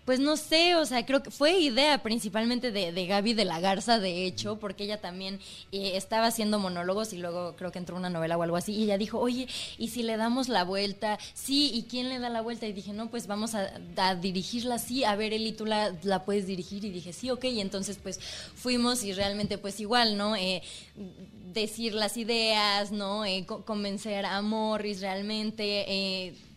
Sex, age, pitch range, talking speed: female, 20-39, 190-220 Hz, 210 wpm